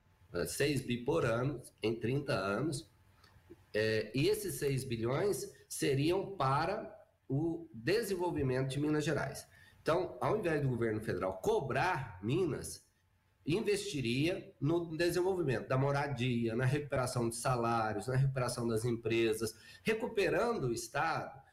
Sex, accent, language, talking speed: male, Brazilian, Portuguese, 115 wpm